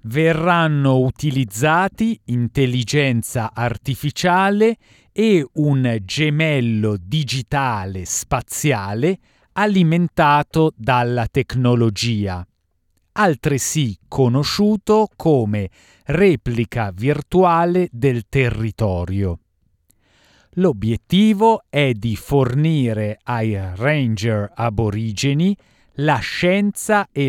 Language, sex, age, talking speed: Italian, male, 40-59, 65 wpm